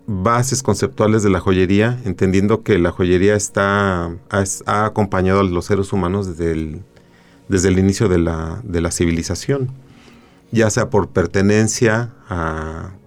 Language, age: Spanish, 40-59